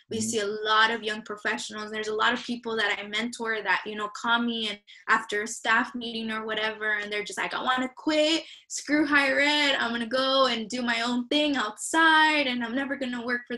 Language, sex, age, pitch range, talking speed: English, female, 10-29, 210-245 Hz, 245 wpm